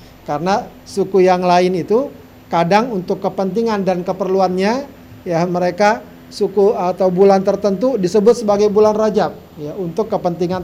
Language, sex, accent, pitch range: Indonesian, male, native, 160-195 Hz